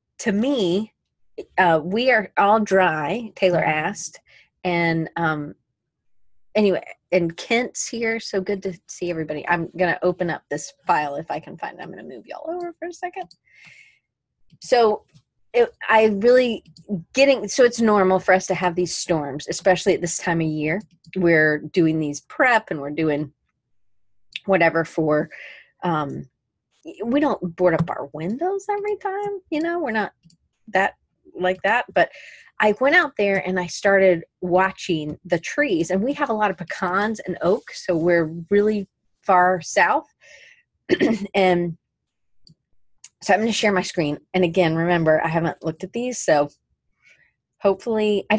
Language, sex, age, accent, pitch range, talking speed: English, female, 30-49, American, 165-220 Hz, 160 wpm